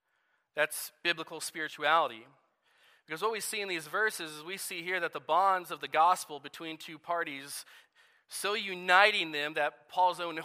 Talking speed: 165 wpm